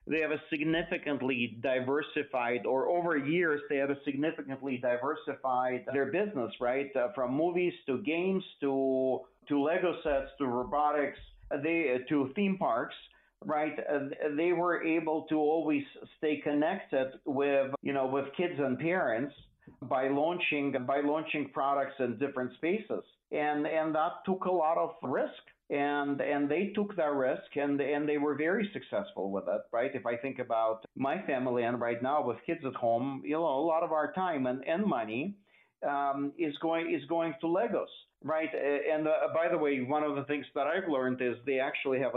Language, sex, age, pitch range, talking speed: English, male, 50-69, 130-155 Hz, 175 wpm